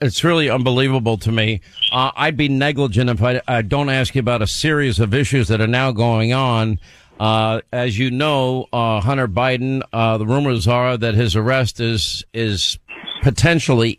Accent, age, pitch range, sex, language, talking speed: American, 50-69, 110-135 Hz, male, English, 180 wpm